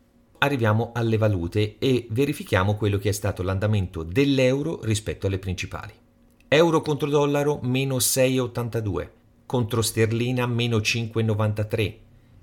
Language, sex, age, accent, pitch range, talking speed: Italian, male, 40-59, native, 95-120 Hz, 110 wpm